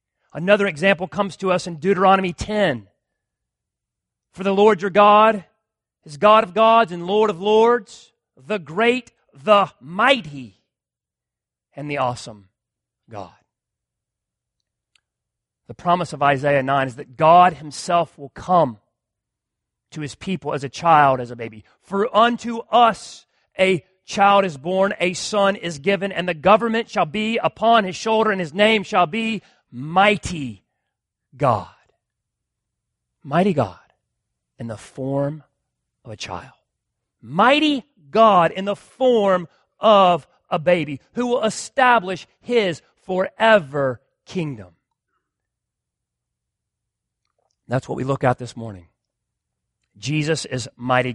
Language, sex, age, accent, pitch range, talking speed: English, male, 40-59, American, 135-210 Hz, 125 wpm